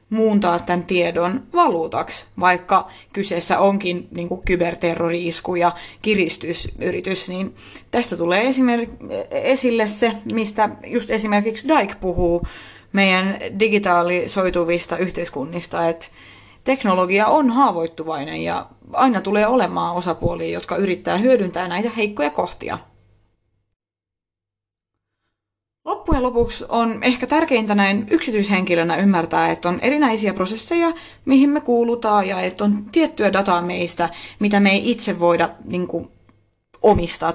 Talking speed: 110 wpm